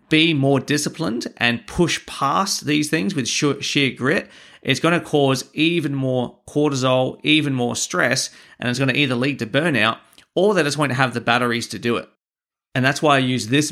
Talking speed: 200 wpm